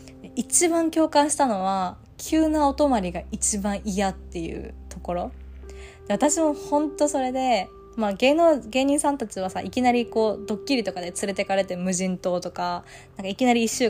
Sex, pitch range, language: female, 185-280 Hz, Japanese